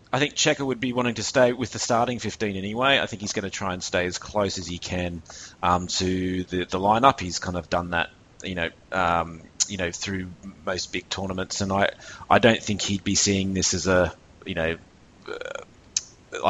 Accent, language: Australian, English